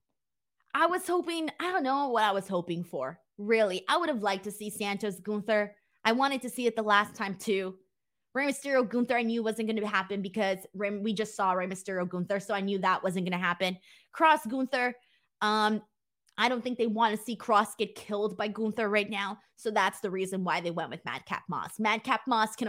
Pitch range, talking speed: 190-245 Hz, 220 wpm